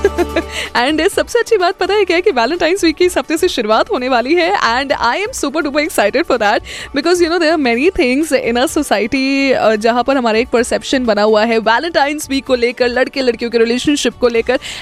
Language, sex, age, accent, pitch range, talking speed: Hindi, female, 20-39, native, 220-305 Hz, 220 wpm